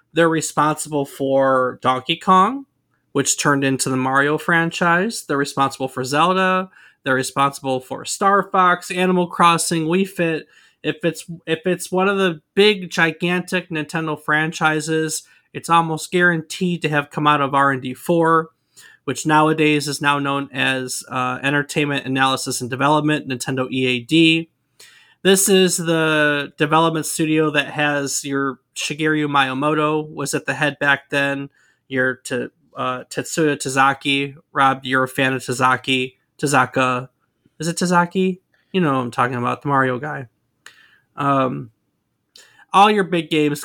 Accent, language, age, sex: American, English, 20-39, male